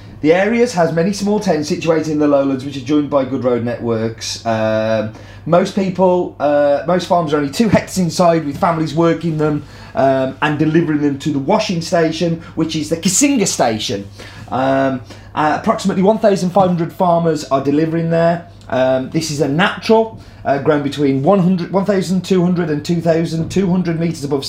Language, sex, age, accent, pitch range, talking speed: English, male, 30-49, British, 110-165 Hz, 165 wpm